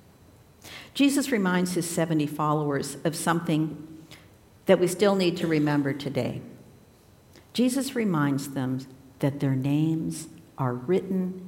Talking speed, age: 115 wpm, 60-79